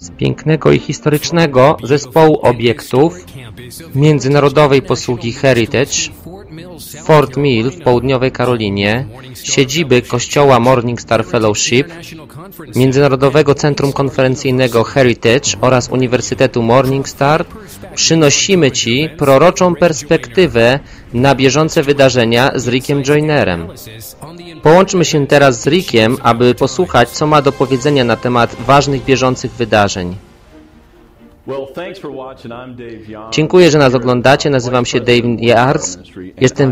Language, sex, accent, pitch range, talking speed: Polish, male, native, 120-150 Hz, 100 wpm